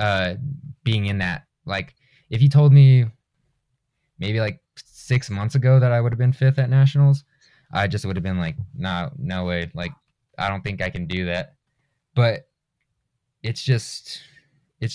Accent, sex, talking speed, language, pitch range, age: American, male, 175 wpm, English, 95-130 Hz, 20-39